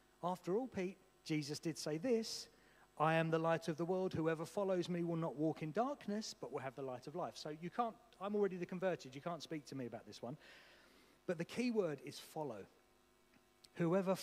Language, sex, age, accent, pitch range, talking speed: English, male, 40-59, British, 130-175 Hz, 215 wpm